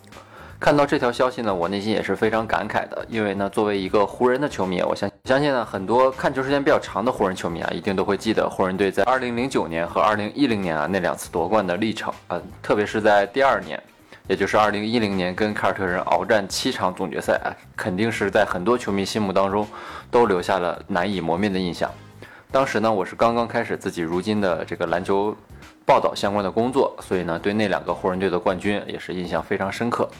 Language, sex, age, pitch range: Chinese, male, 20-39, 95-120 Hz